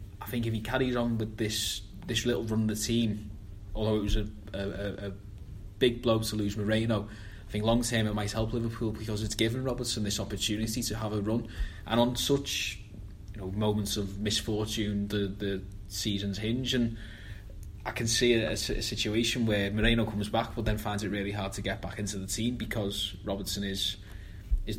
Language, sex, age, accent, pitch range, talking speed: English, male, 20-39, British, 100-115 Hz, 200 wpm